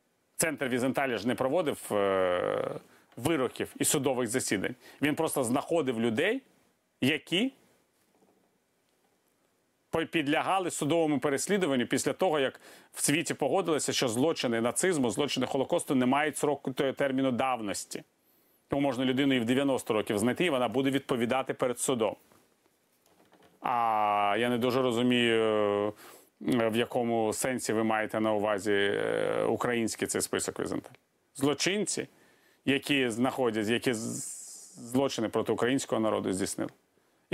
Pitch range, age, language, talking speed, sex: 115-140 Hz, 40-59, Ukrainian, 120 wpm, male